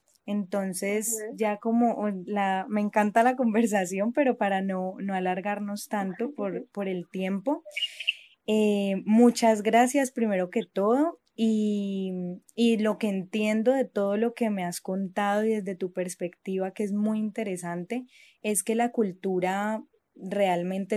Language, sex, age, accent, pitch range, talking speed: Spanish, female, 10-29, Colombian, 180-220 Hz, 135 wpm